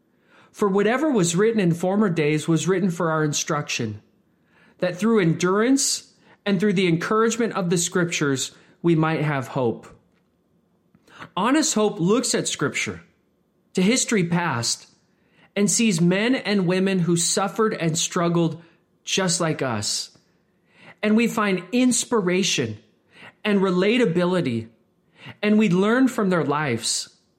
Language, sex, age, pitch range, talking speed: English, male, 30-49, 160-210 Hz, 125 wpm